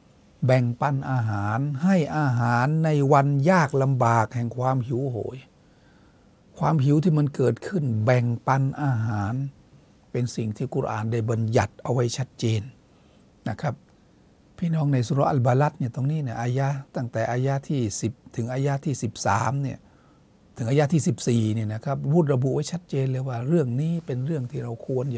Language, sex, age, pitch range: Thai, male, 60-79, 115-140 Hz